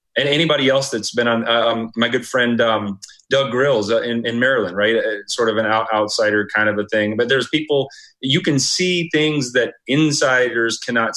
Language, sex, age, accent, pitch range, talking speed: English, male, 30-49, American, 110-135 Hz, 205 wpm